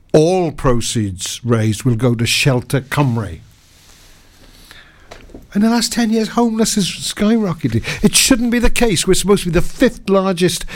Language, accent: English, British